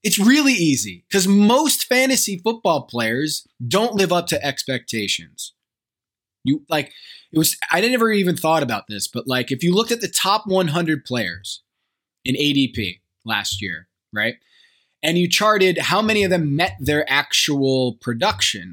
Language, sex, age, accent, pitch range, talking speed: English, male, 20-39, American, 115-180 Hz, 155 wpm